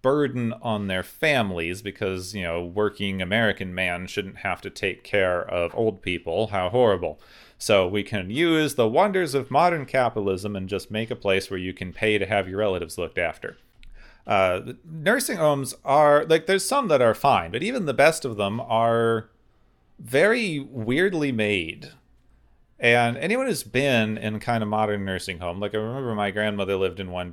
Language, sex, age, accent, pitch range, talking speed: English, male, 30-49, American, 95-135 Hz, 180 wpm